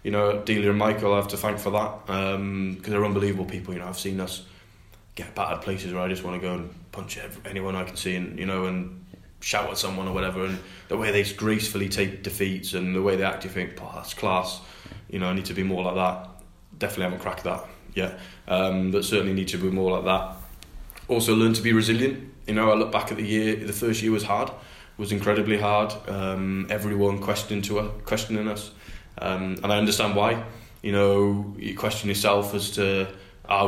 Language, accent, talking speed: English, British, 225 wpm